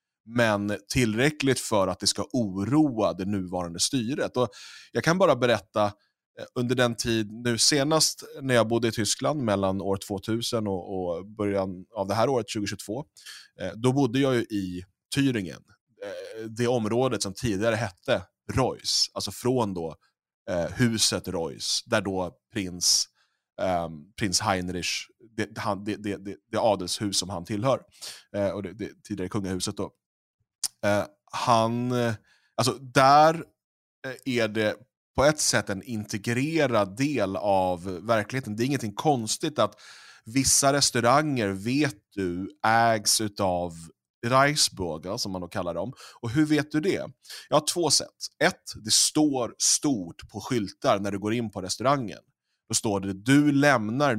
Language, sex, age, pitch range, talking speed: Swedish, male, 30-49, 95-125 Hz, 140 wpm